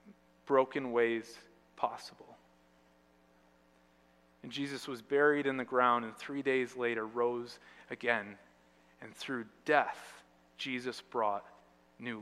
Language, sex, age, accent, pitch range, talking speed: English, male, 30-49, American, 110-165 Hz, 110 wpm